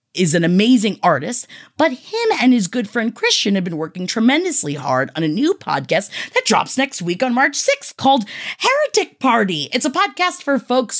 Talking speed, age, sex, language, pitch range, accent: 190 wpm, 30-49, female, English, 180-285 Hz, American